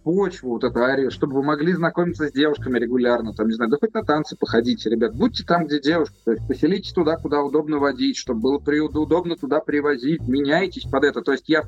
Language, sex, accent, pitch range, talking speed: Russian, male, native, 125-165 Hz, 220 wpm